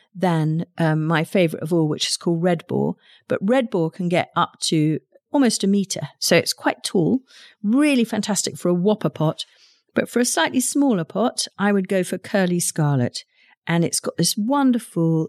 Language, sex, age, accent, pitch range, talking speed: English, female, 50-69, British, 160-205 Hz, 190 wpm